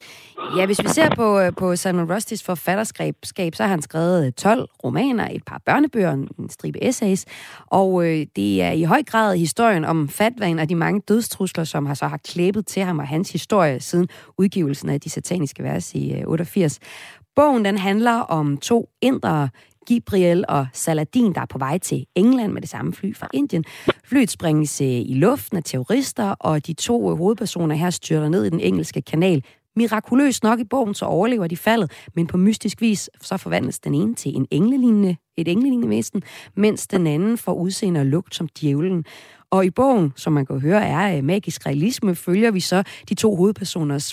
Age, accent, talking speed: 30-49, native, 190 wpm